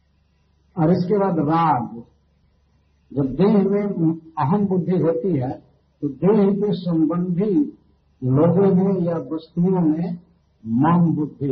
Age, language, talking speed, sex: 50-69, Hindi, 115 wpm, male